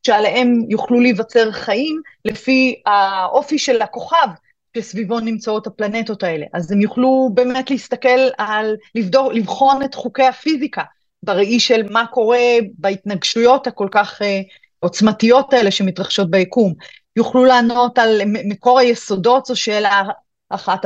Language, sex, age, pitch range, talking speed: Hebrew, female, 30-49, 200-270 Hz, 125 wpm